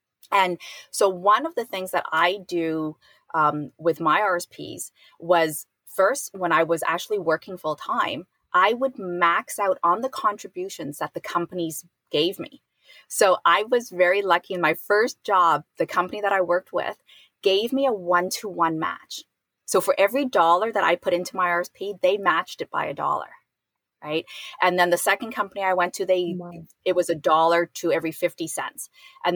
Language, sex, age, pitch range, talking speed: English, female, 30-49, 170-210 Hz, 180 wpm